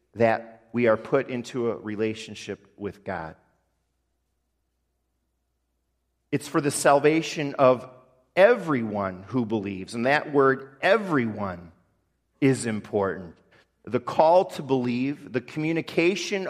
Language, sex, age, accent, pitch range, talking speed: English, male, 40-59, American, 115-175 Hz, 105 wpm